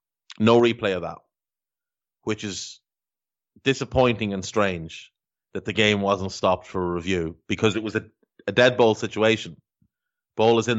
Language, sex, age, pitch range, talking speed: English, male, 30-49, 95-115 Hz, 155 wpm